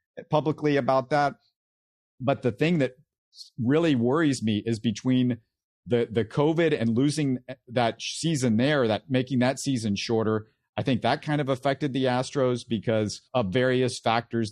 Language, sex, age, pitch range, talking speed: English, male, 50-69, 115-135 Hz, 155 wpm